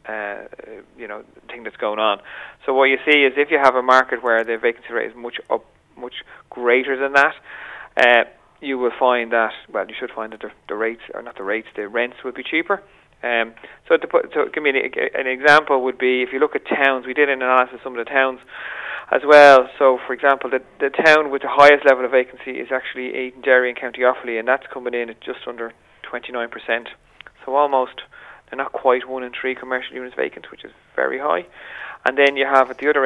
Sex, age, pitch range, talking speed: male, 30-49, 120-140 Hz, 230 wpm